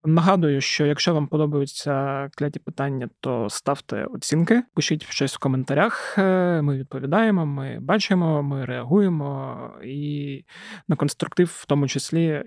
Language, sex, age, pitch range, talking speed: Ukrainian, male, 20-39, 140-170 Hz, 125 wpm